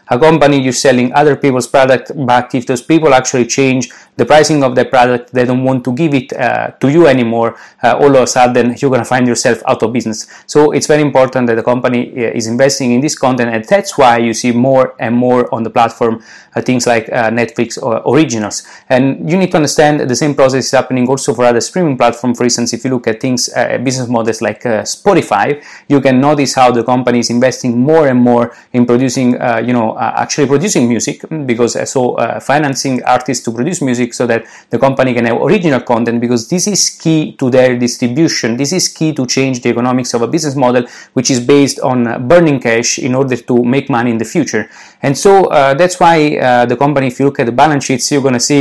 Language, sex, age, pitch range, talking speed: English, male, 20-39, 120-140 Hz, 230 wpm